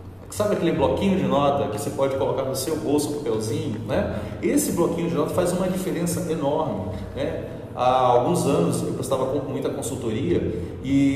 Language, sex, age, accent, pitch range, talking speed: Portuguese, male, 30-49, Brazilian, 120-180 Hz, 170 wpm